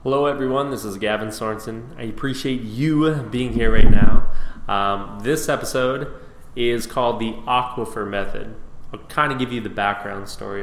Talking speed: 165 wpm